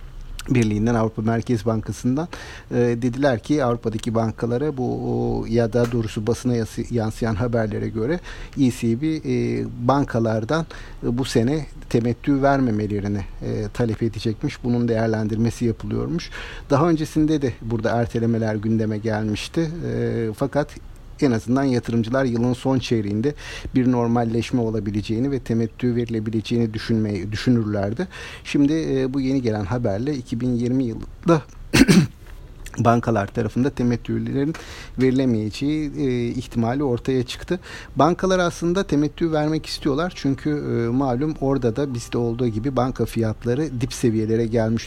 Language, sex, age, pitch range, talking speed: Turkish, male, 50-69, 110-135 Hz, 115 wpm